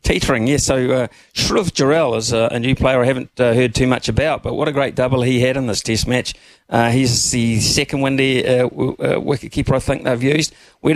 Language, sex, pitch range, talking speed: English, male, 110-125 Hz, 220 wpm